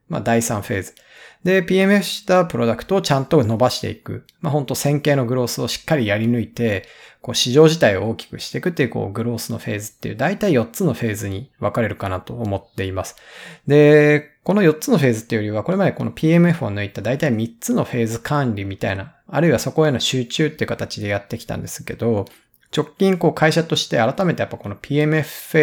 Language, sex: Japanese, male